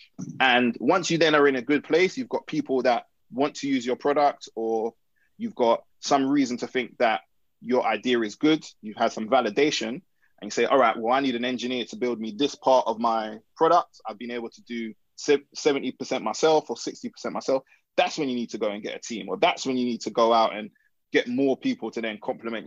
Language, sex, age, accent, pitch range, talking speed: English, male, 20-39, British, 115-145 Hz, 230 wpm